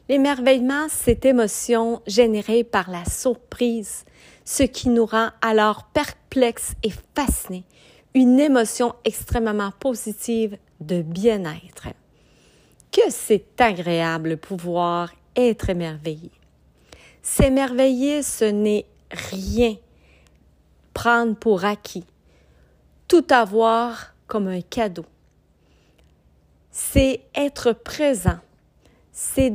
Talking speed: 90 wpm